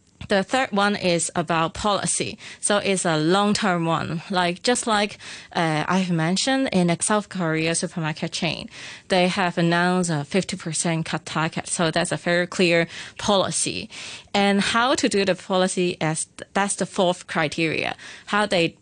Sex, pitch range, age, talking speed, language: female, 165-195 Hz, 20-39, 165 wpm, English